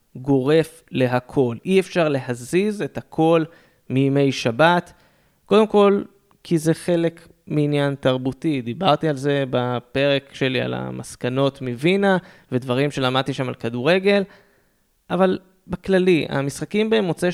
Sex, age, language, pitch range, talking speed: male, 20-39, Hebrew, 130-170 Hz, 115 wpm